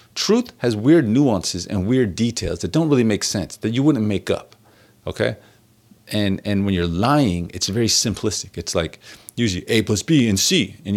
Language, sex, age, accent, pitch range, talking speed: English, male, 40-59, American, 95-120 Hz, 190 wpm